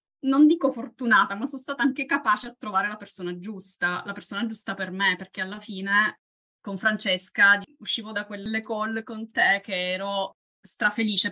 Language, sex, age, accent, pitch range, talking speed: Italian, female, 20-39, native, 185-220 Hz, 170 wpm